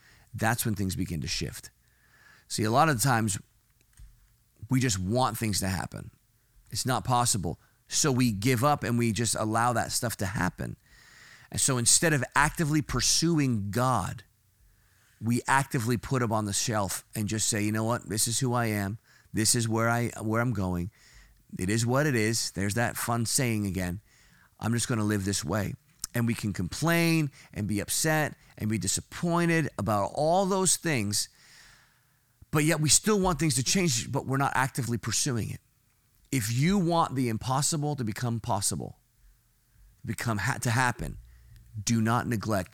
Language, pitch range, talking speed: English, 105-130 Hz, 170 wpm